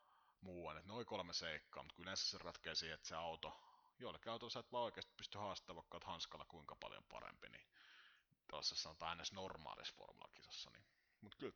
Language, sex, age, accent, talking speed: Finnish, male, 30-49, native, 165 wpm